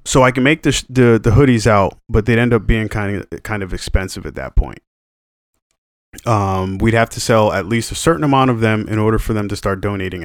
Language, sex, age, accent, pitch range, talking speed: English, male, 30-49, American, 95-115 Hz, 245 wpm